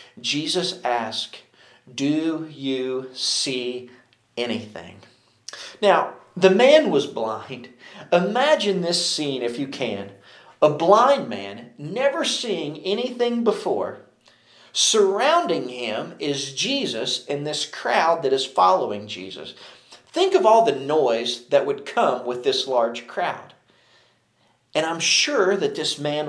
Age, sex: 40-59, male